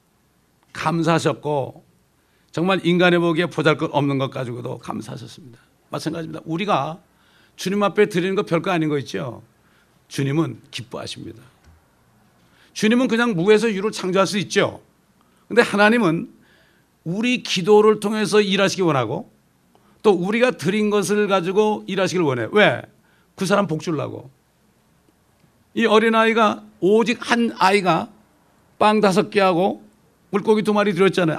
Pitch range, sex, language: 160-210 Hz, male, English